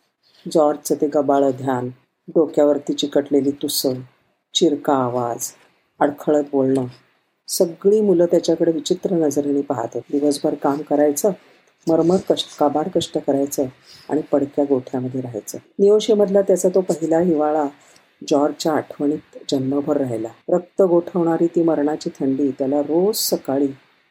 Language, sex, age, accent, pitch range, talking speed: Marathi, female, 50-69, native, 140-170 Hz, 110 wpm